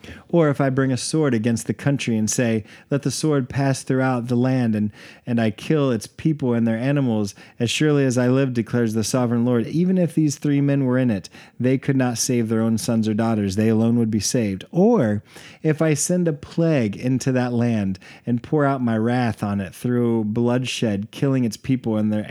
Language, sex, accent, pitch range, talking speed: English, male, American, 110-135 Hz, 220 wpm